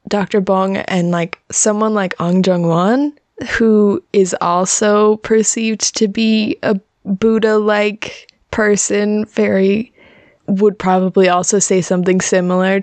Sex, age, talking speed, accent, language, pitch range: female, 20-39, 115 wpm, American, English, 185-215 Hz